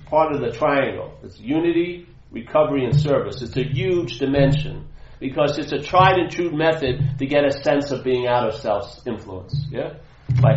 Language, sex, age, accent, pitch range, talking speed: English, male, 40-59, American, 135-165 Hz, 180 wpm